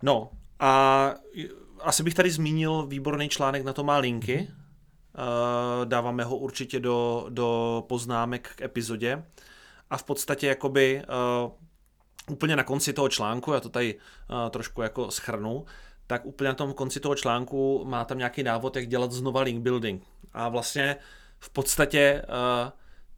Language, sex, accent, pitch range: Czech, male, native, 120-140 Hz